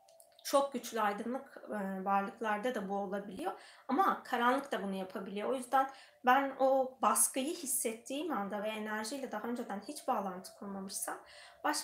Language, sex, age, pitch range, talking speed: Turkish, female, 20-39, 210-255 Hz, 135 wpm